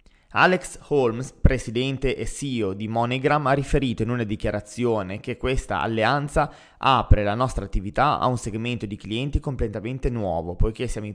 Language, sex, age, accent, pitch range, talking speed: Italian, male, 20-39, native, 110-135 Hz, 155 wpm